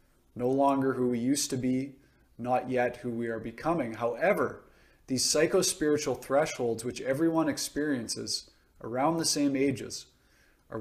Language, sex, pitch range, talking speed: English, male, 115-140 Hz, 140 wpm